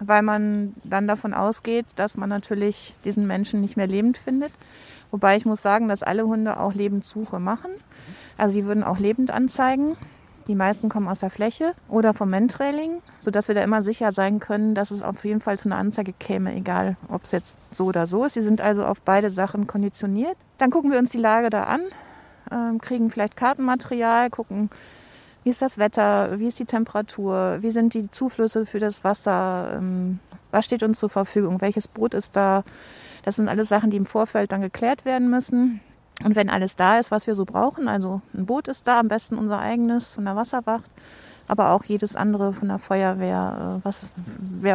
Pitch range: 200-235 Hz